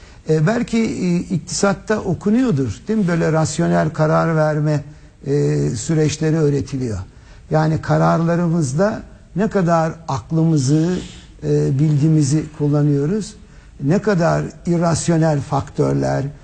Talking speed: 80 wpm